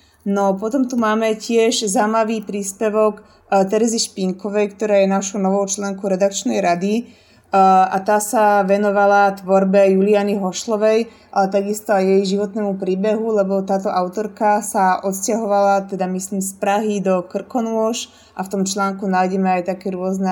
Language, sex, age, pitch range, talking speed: Slovak, female, 20-39, 195-210 Hz, 140 wpm